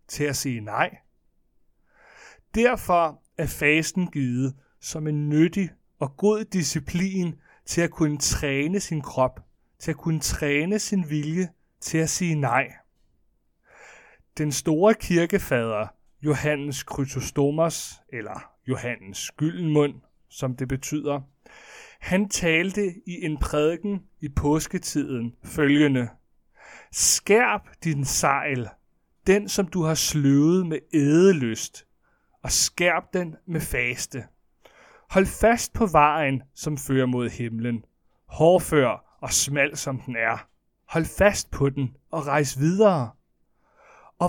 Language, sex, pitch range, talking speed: Danish, male, 135-175 Hz, 115 wpm